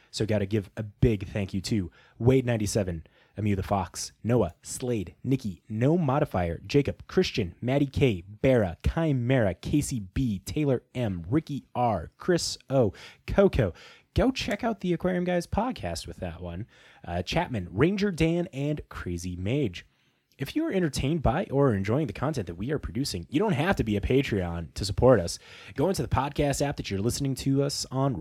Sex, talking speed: male, 180 wpm